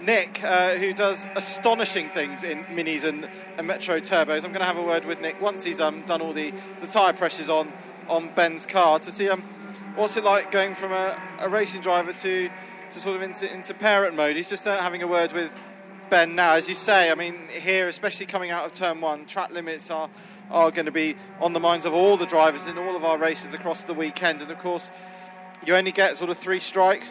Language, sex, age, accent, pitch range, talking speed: English, male, 30-49, British, 170-195 Hz, 235 wpm